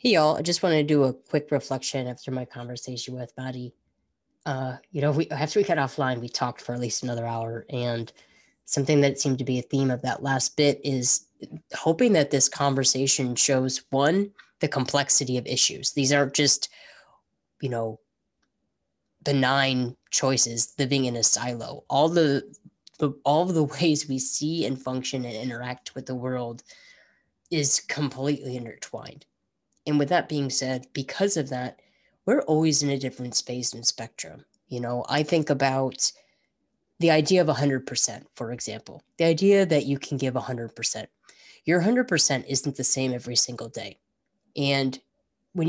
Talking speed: 165 wpm